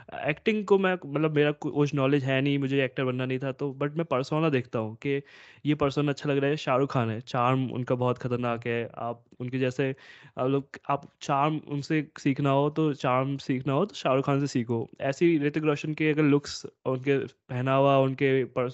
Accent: native